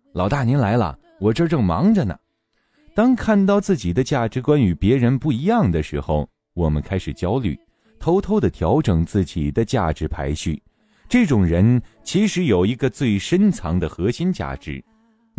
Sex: male